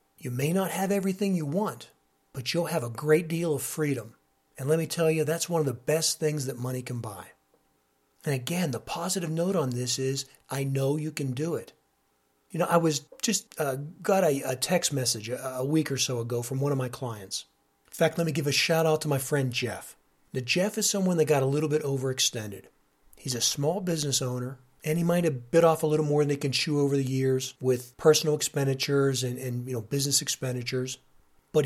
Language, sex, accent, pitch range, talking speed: English, male, American, 130-165 Hz, 225 wpm